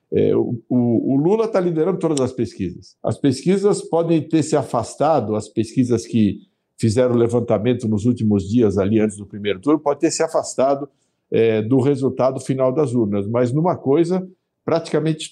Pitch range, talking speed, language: 110-155 Hz, 170 wpm, Portuguese